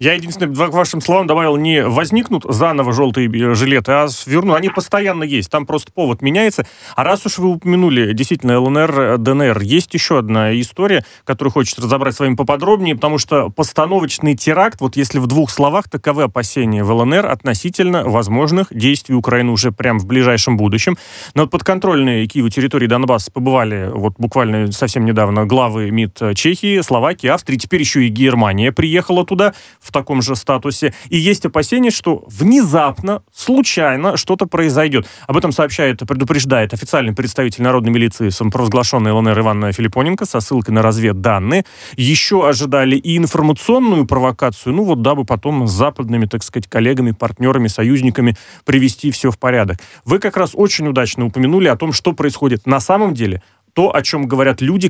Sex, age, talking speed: male, 30-49, 165 wpm